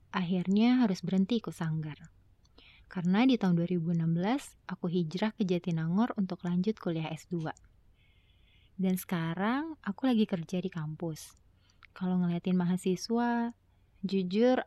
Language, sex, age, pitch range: Indonesian, female, 20-39, 170-210 Hz